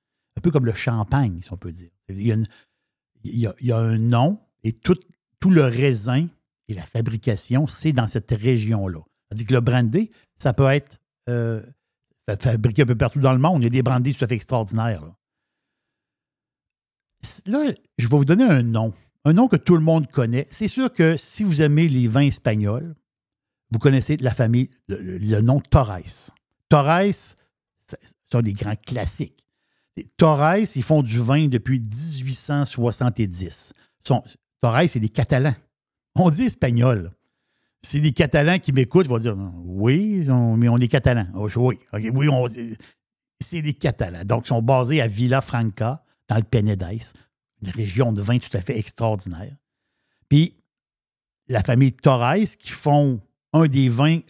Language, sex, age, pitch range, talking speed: French, male, 60-79, 115-150 Hz, 170 wpm